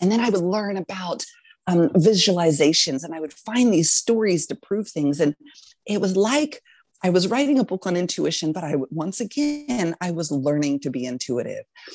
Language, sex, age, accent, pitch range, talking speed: English, female, 30-49, American, 150-195 Hz, 195 wpm